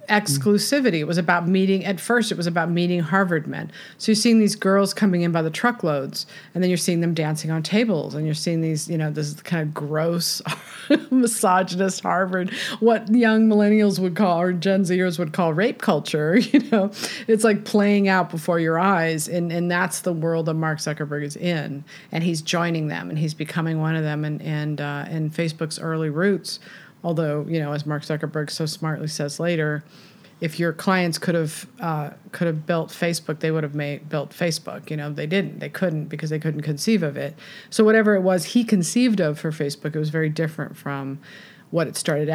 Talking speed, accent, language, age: 205 wpm, American, English, 40-59